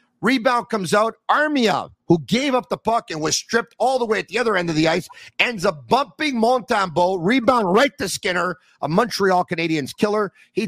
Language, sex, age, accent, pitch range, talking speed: English, male, 50-69, American, 165-210 Hz, 195 wpm